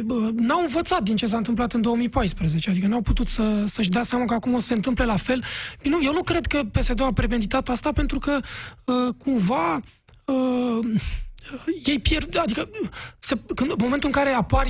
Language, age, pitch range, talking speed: Romanian, 20-39, 220-265 Hz, 195 wpm